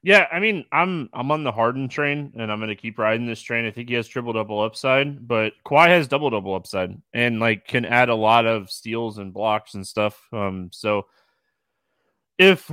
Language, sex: English, male